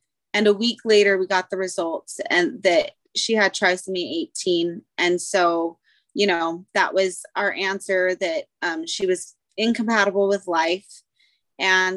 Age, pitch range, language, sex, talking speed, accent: 30-49, 200-260 Hz, English, female, 150 wpm, American